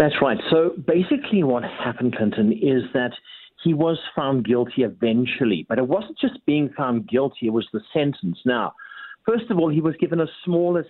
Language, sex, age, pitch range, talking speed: English, male, 50-69, 130-185 Hz, 185 wpm